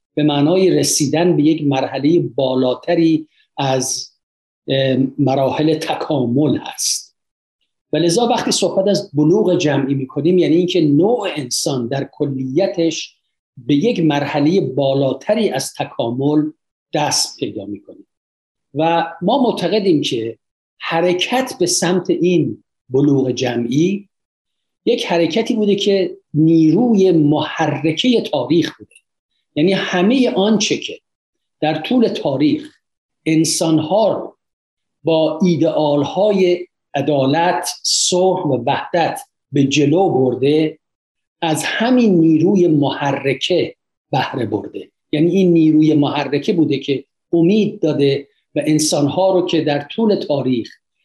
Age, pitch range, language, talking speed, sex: 50-69, 145-180 Hz, Persian, 105 wpm, male